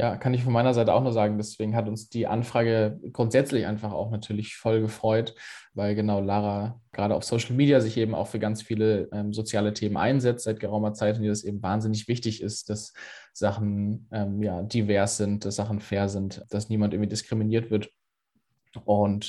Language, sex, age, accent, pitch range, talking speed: German, male, 20-39, German, 105-115 Hz, 195 wpm